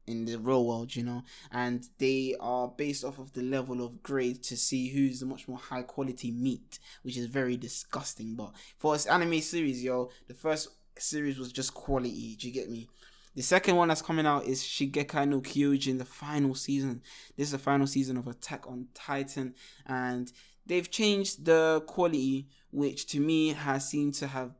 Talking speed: 195 wpm